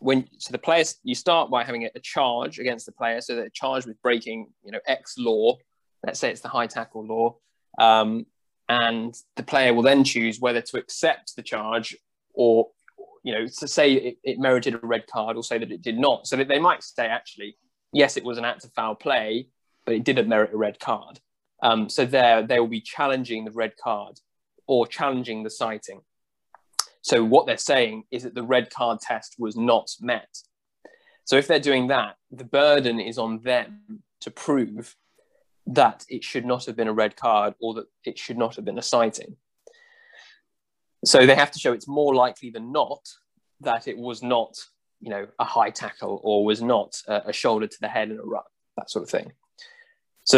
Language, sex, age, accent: English, male, 20-39, British